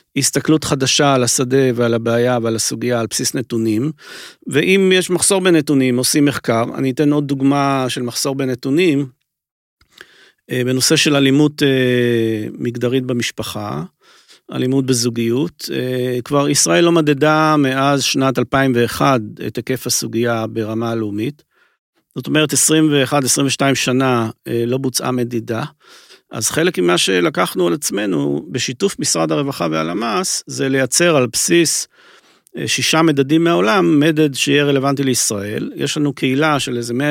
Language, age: Hebrew, 40-59